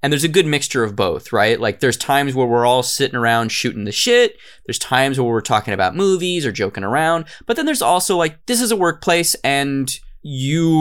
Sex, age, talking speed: male, 20-39, 220 wpm